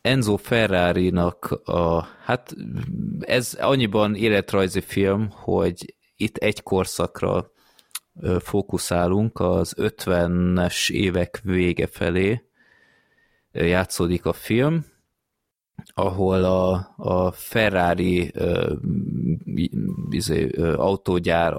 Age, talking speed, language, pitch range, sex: 20-39, 65 wpm, Hungarian, 85-100 Hz, male